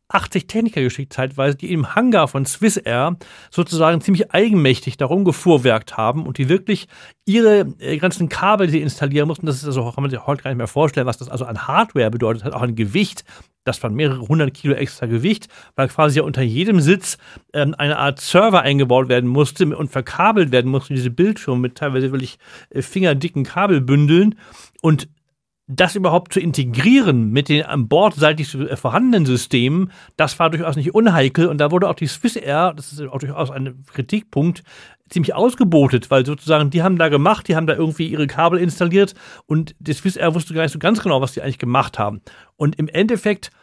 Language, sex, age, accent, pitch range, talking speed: German, male, 40-59, German, 135-180 Hz, 190 wpm